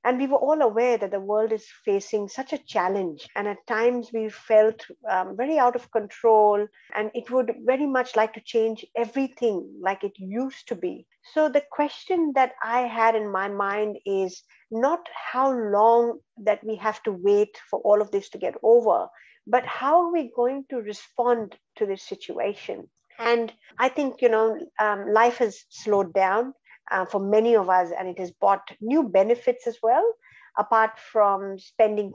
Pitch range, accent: 210-255 Hz, Indian